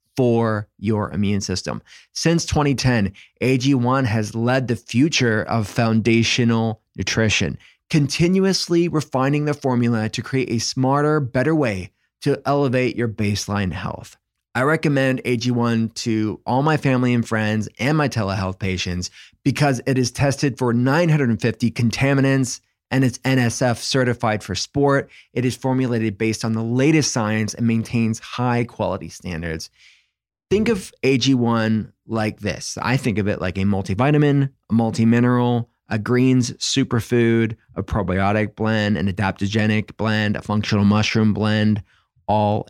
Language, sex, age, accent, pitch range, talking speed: English, male, 20-39, American, 110-135 Hz, 135 wpm